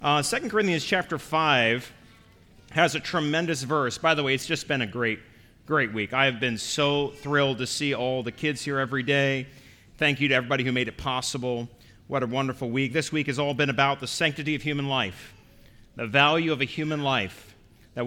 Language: English